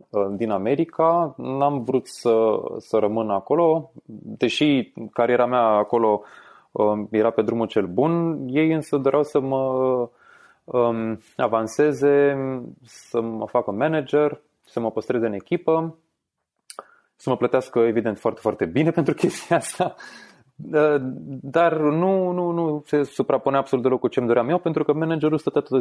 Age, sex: 20-39, male